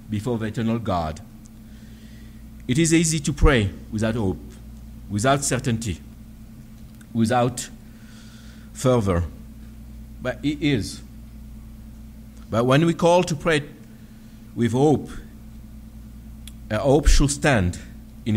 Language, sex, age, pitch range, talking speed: English, male, 60-79, 110-125 Hz, 100 wpm